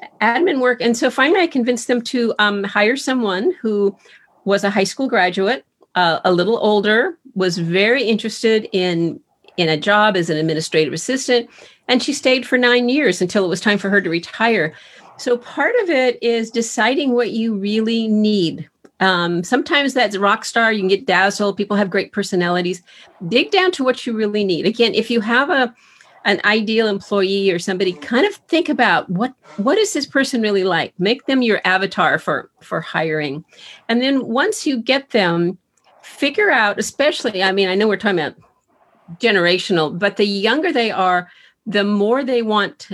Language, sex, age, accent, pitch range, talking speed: English, female, 40-59, American, 190-245 Hz, 185 wpm